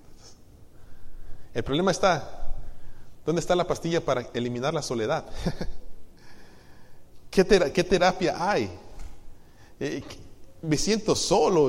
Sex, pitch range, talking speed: male, 115-180 Hz, 90 wpm